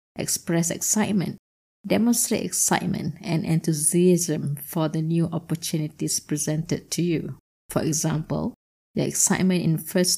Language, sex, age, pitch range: English, female, 20-39, 165-190 Hz